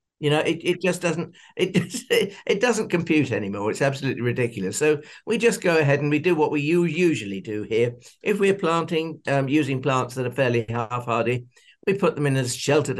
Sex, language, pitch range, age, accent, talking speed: male, English, 120-165 Hz, 60-79, British, 210 wpm